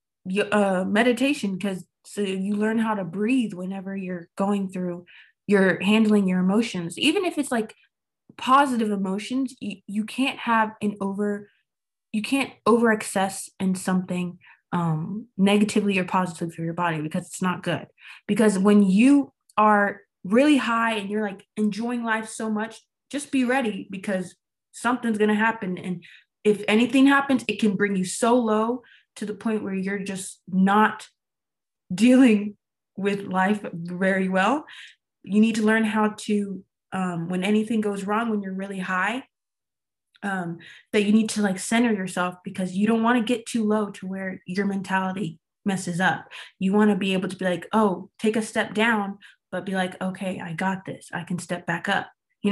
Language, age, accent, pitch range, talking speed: English, 20-39, American, 190-220 Hz, 175 wpm